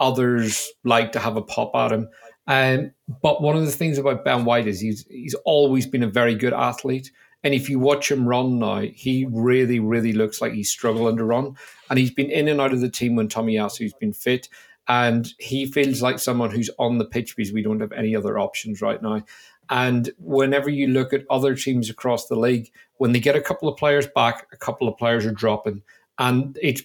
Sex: male